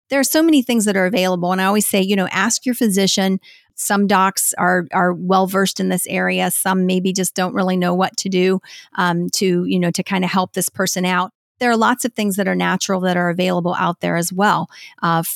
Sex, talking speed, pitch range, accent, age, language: female, 240 wpm, 180-205 Hz, American, 40-59, English